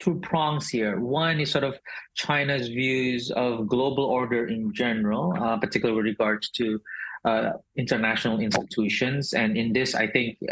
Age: 30-49